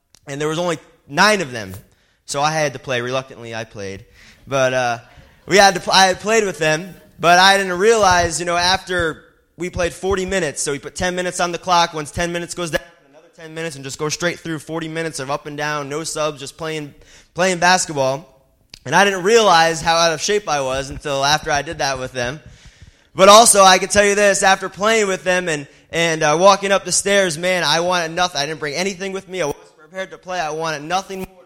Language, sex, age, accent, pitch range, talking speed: English, male, 20-39, American, 145-180 Hz, 235 wpm